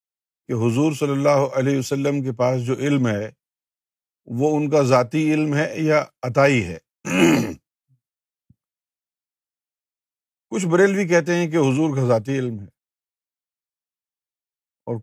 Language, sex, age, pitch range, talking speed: Urdu, male, 50-69, 130-175 Hz, 120 wpm